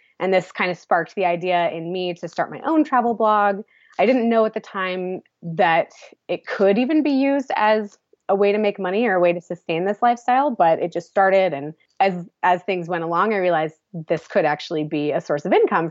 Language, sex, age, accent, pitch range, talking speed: English, female, 20-39, American, 165-205 Hz, 225 wpm